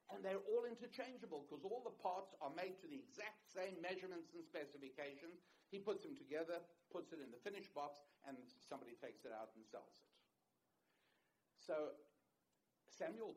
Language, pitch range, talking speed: English, 125-200 Hz, 165 wpm